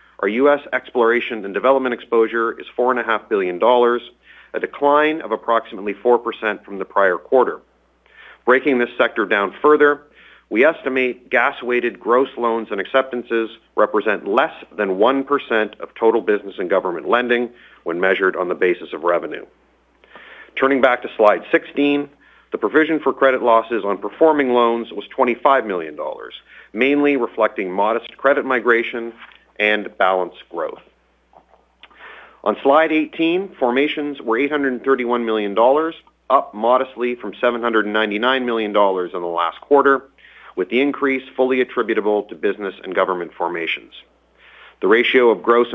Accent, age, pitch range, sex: American, 40-59, 110-140 Hz, male